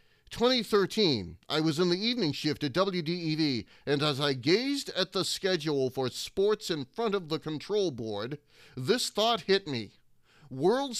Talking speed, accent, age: 160 wpm, American, 40-59